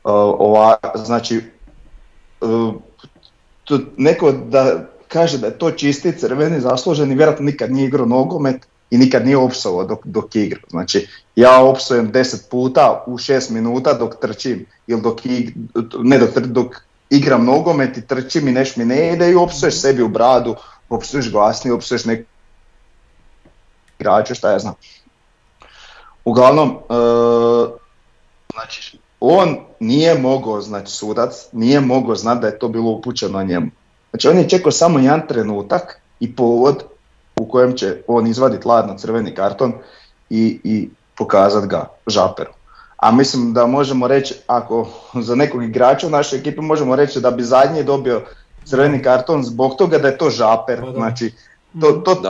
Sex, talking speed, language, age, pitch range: male, 145 wpm, Croatian, 40-59, 115-140 Hz